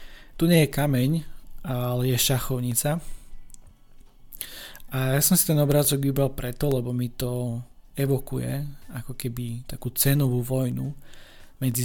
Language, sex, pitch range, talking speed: Slovak, male, 120-140 Hz, 125 wpm